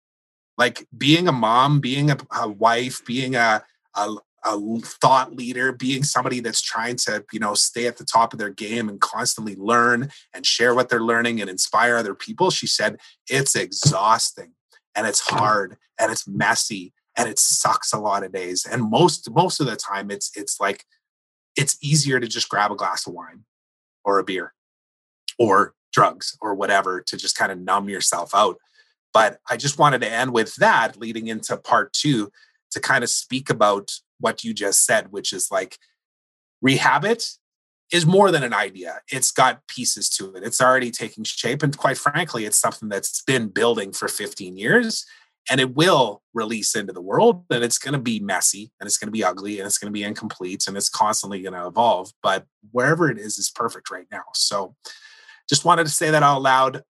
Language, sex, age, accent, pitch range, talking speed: English, male, 30-49, American, 105-150 Hz, 195 wpm